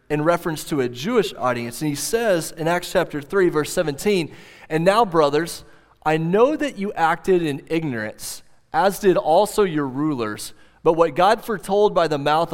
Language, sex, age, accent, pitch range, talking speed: English, male, 30-49, American, 145-195 Hz, 175 wpm